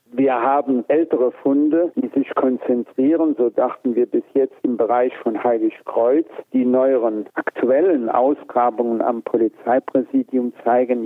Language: German